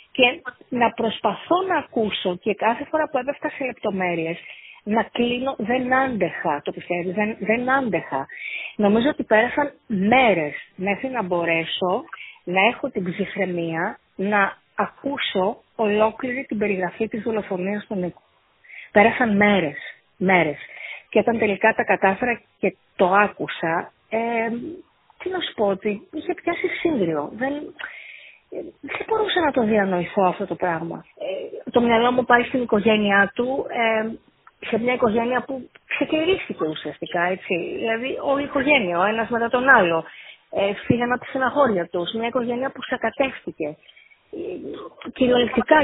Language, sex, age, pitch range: Greek, female, 30-49, 195-265 Hz